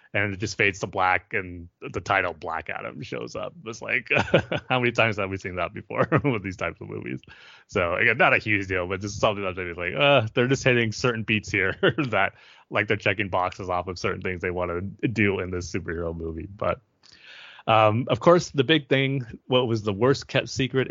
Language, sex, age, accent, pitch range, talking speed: English, male, 30-49, American, 100-125 Hz, 220 wpm